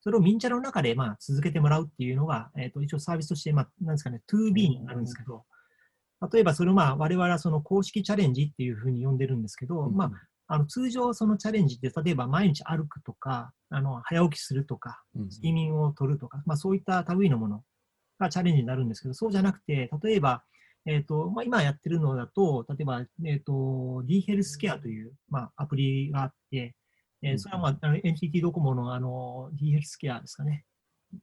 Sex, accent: male, native